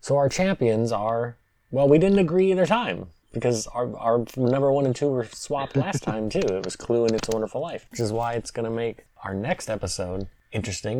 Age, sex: 20-39, male